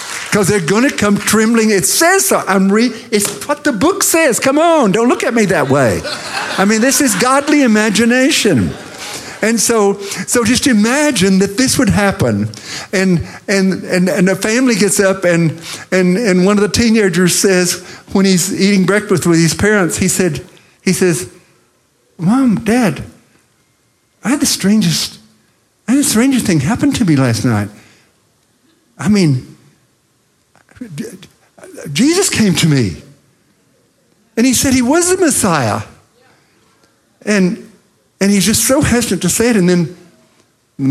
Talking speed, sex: 155 wpm, male